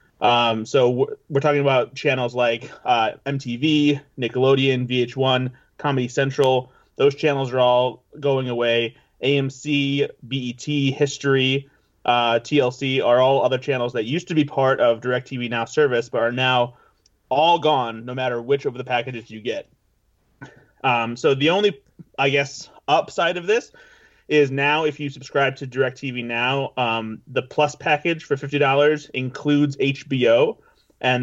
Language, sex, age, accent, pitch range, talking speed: English, male, 30-49, American, 125-145 Hz, 145 wpm